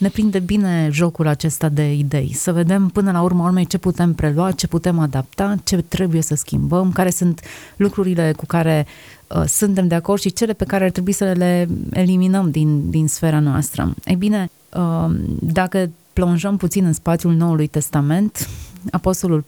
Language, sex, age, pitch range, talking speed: Romanian, female, 30-49, 160-185 Hz, 175 wpm